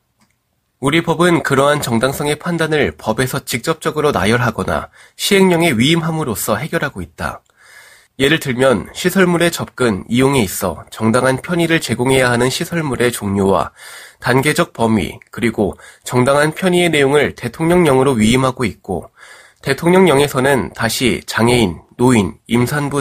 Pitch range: 115-165 Hz